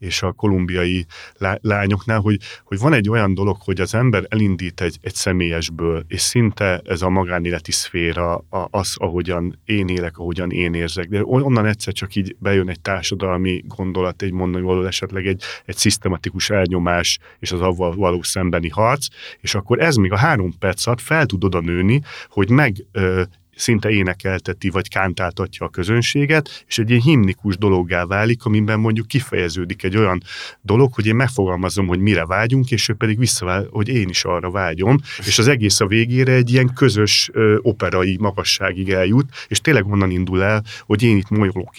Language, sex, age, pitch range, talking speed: Hungarian, male, 30-49, 90-115 Hz, 175 wpm